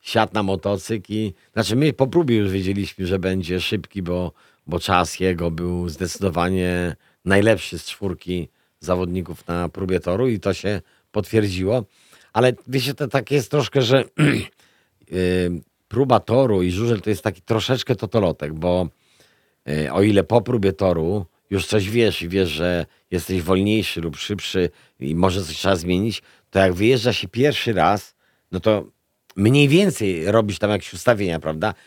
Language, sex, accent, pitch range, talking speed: Polish, male, native, 95-125 Hz, 160 wpm